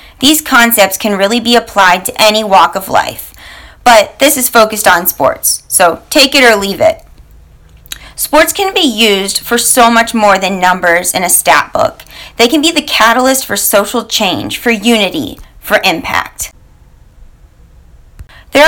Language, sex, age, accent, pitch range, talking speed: English, female, 30-49, American, 195-250 Hz, 160 wpm